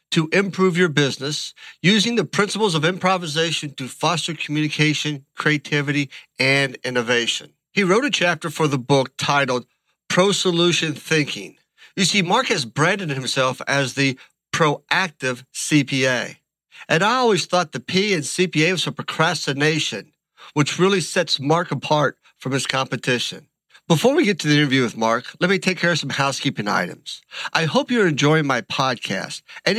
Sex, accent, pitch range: male, American, 140-190 Hz